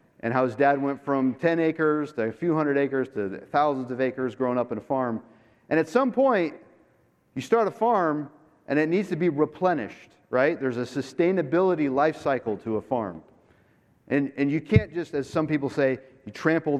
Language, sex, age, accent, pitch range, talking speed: English, male, 40-59, American, 120-160 Hz, 200 wpm